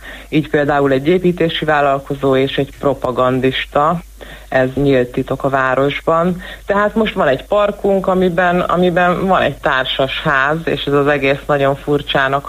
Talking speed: 145 wpm